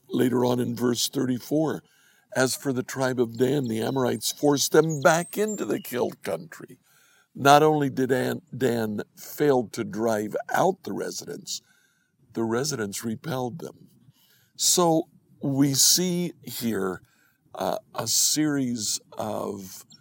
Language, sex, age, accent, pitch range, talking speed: English, male, 60-79, American, 115-145 Hz, 125 wpm